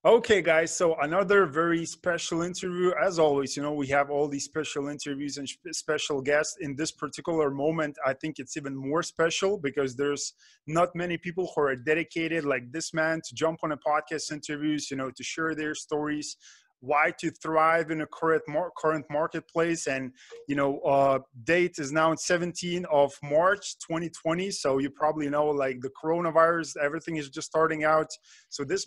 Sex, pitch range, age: male, 145-170 Hz, 20-39